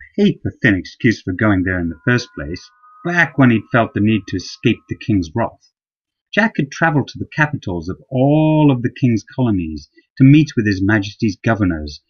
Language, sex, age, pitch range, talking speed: English, male, 30-49, 95-145 Hz, 200 wpm